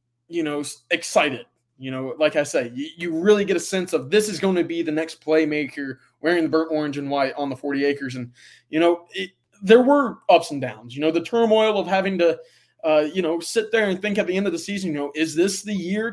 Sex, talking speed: male, 255 wpm